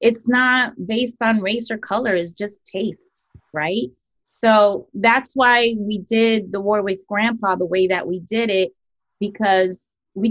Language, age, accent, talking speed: English, 30-49, American, 165 wpm